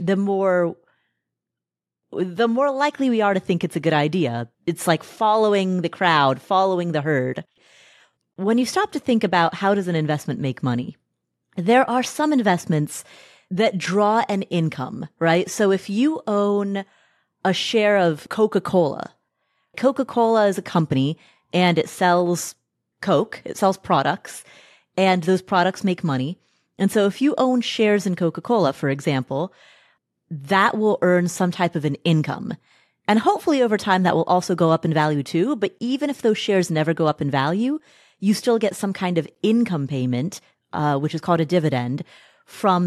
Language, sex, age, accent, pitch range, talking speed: English, female, 30-49, American, 155-205 Hz, 170 wpm